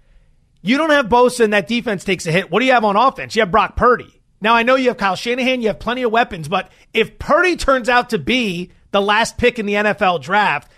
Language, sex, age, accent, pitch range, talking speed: English, male, 30-49, American, 195-235 Hz, 255 wpm